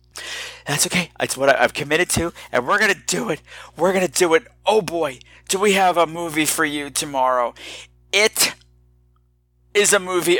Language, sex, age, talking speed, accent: English, male, 50-69, 175 wpm, American